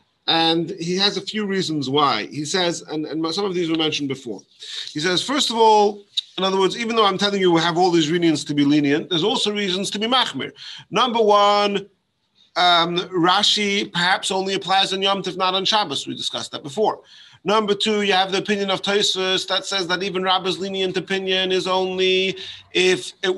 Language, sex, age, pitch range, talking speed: English, male, 30-49, 160-195 Hz, 205 wpm